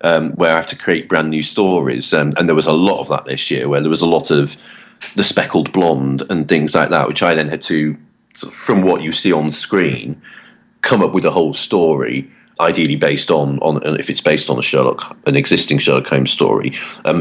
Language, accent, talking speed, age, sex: English, British, 235 wpm, 40-59, male